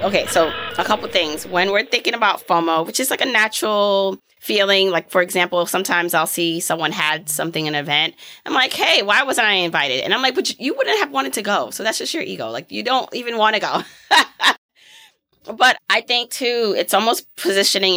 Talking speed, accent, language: 210 wpm, American, English